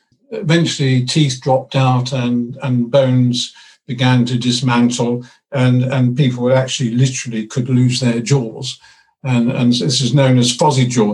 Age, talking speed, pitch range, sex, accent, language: 50-69, 145 wpm, 125-155 Hz, male, British, English